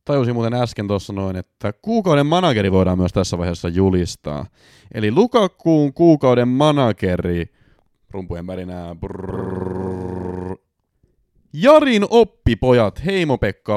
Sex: male